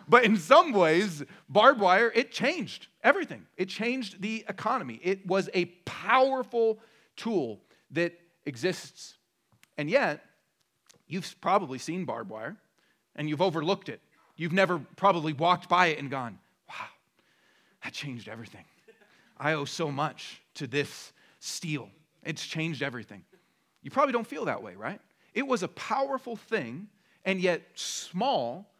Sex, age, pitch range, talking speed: male, 40-59, 145-215 Hz, 140 wpm